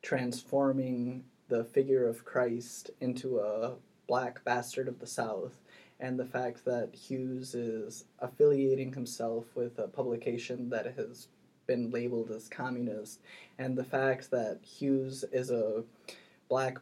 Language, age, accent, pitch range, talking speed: English, 20-39, American, 120-135 Hz, 130 wpm